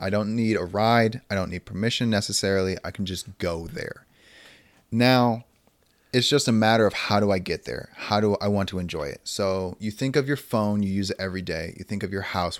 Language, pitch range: English, 95-115 Hz